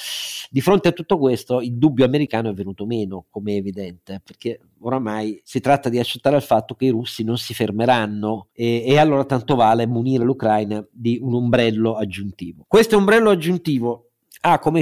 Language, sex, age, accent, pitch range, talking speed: Italian, male, 50-69, native, 115-140 Hz, 180 wpm